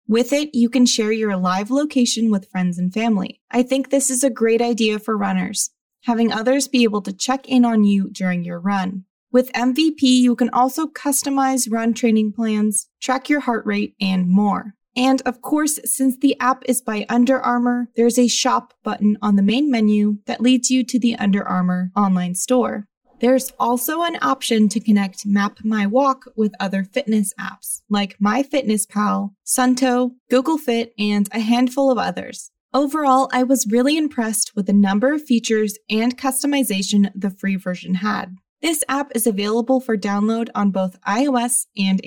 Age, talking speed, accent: 20-39, 175 wpm, American